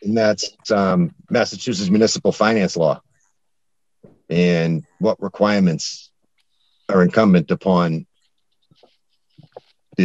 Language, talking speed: English, 85 wpm